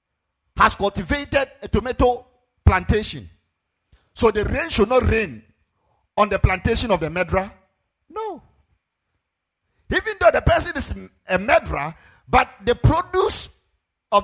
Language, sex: English, male